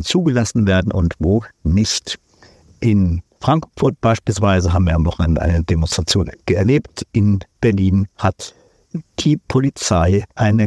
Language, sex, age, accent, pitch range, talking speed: German, male, 50-69, German, 95-115 Hz, 120 wpm